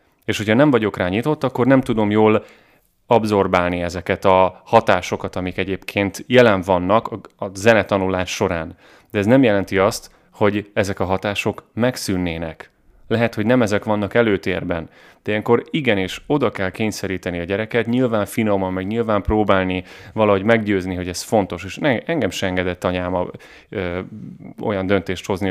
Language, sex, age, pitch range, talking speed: Hungarian, male, 30-49, 90-110 Hz, 150 wpm